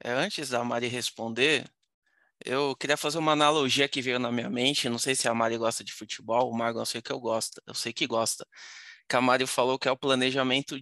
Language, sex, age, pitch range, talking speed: Portuguese, male, 20-39, 115-135 Hz, 225 wpm